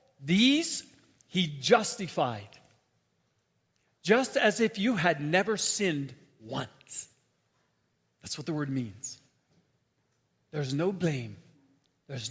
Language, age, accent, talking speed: English, 50-69, American, 95 wpm